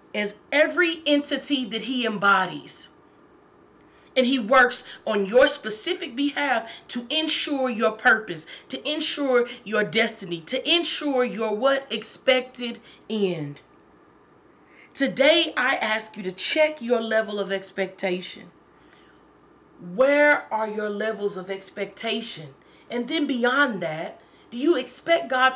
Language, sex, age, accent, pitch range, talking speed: English, female, 30-49, American, 190-265 Hz, 120 wpm